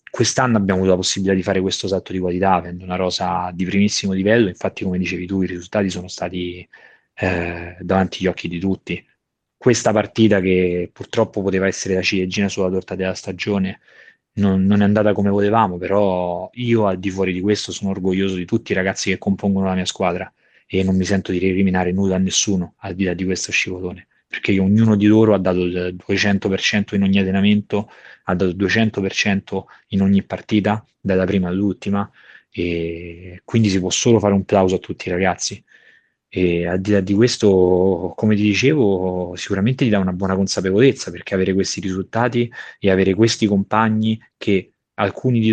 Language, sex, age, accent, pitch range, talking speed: Italian, male, 20-39, native, 95-105 Hz, 185 wpm